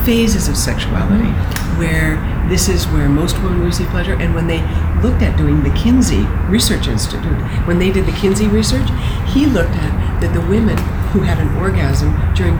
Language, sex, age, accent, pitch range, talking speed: English, female, 60-79, American, 80-95 Hz, 180 wpm